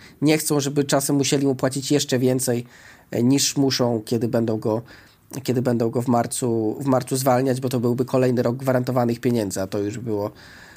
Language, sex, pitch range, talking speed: Polish, male, 120-150 Hz, 185 wpm